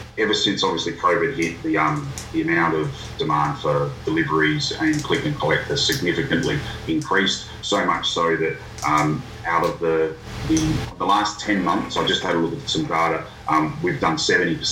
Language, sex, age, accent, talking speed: English, male, 30-49, Australian, 175 wpm